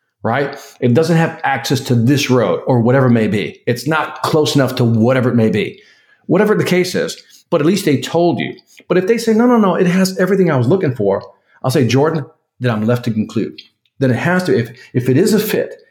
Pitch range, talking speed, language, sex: 120-170 Hz, 240 wpm, English, male